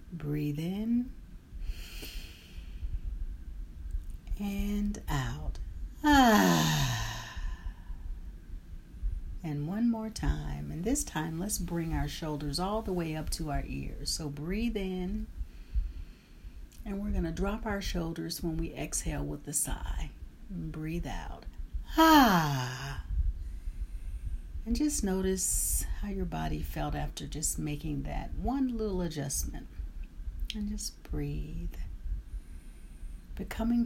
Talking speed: 105 wpm